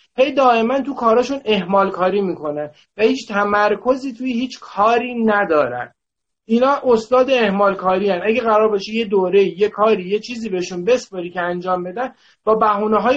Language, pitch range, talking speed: Persian, 185-235 Hz, 165 wpm